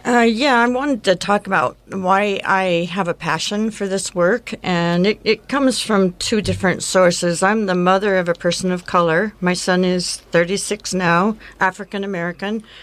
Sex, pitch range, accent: female, 175-200 Hz, American